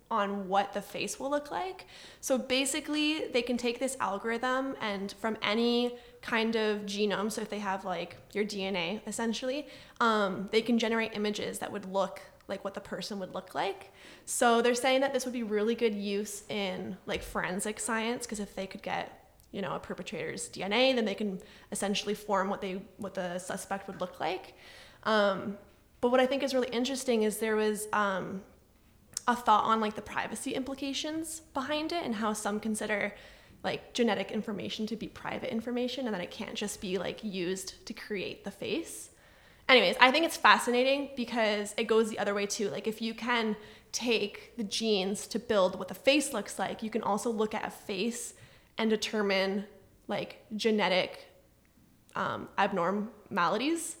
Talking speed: 180 wpm